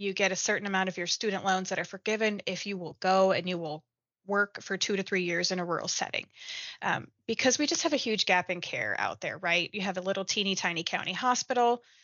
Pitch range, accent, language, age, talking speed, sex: 185-225 Hz, American, English, 20-39, 250 wpm, female